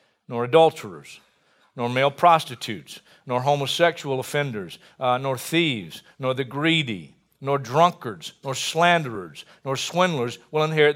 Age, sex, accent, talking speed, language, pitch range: 50-69, male, American, 120 wpm, English, 130-180 Hz